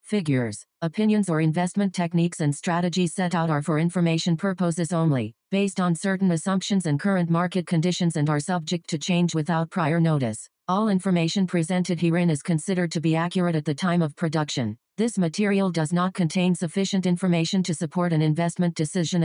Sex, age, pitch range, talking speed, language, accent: female, 40-59, 160-180 Hz, 175 wpm, English, American